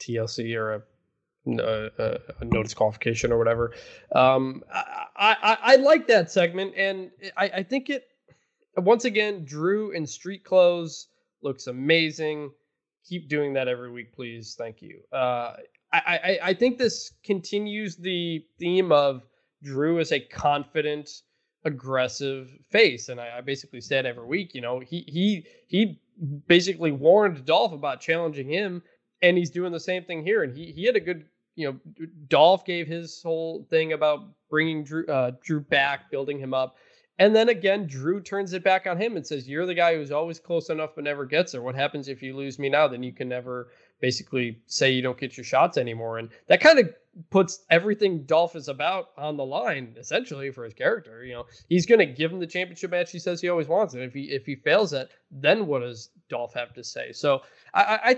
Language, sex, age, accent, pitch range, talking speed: English, male, 20-39, American, 135-185 Hz, 195 wpm